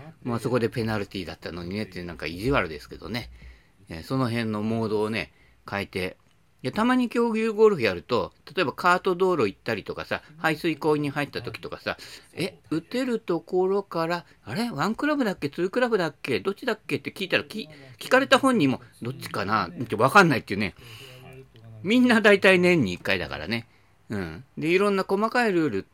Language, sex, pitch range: Japanese, male, 115-195 Hz